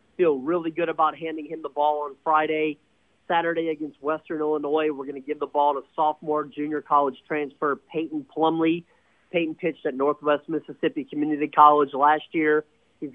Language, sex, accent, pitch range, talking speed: English, male, American, 140-155 Hz, 170 wpm